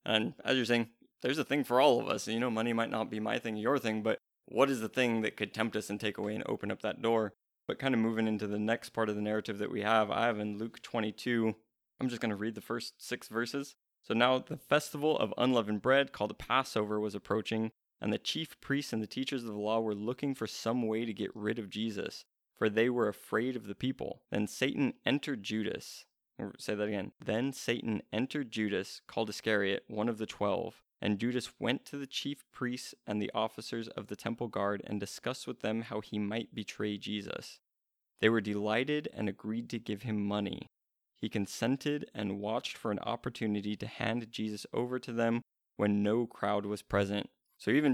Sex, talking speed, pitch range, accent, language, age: male, 220 wpm, 105-125 Hz, American, English, 20-39